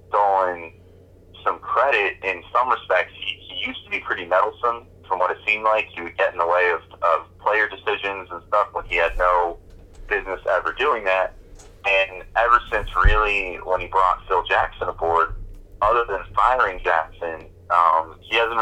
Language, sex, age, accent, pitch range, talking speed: English, male, 30-49, American, 90-100 Hz, 175 wpm